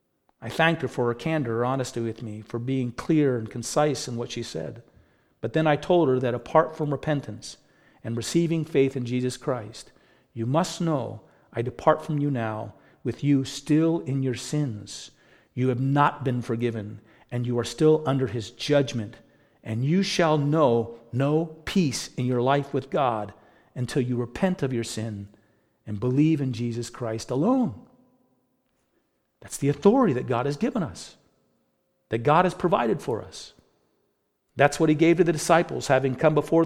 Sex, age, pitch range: male, 50-69, 125-170 Hz